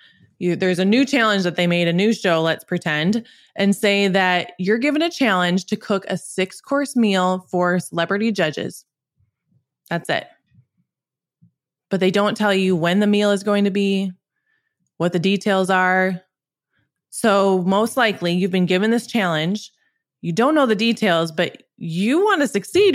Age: 20-39